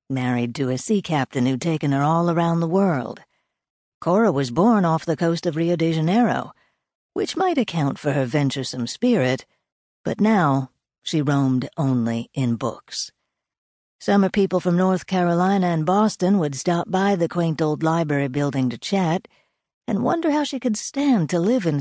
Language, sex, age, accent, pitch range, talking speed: English, female, 60-79, American, 140-195 Hz, 170 wpm